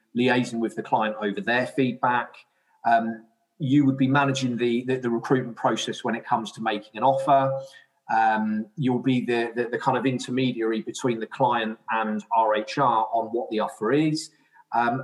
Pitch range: 115-140 Hz